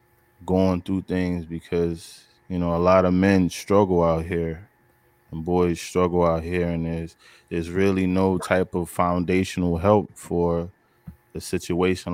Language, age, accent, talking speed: English, 20-39, American, 150 wpm